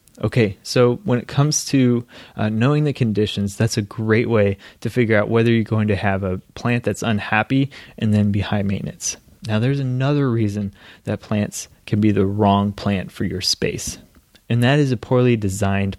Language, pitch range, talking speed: English, 100-125 Hz, 190 wpm